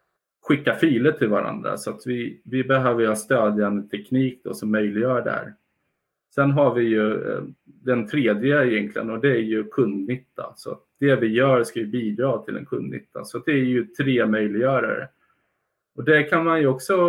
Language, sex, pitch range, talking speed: Swedish, male, 110-135 Hz, 185 wpm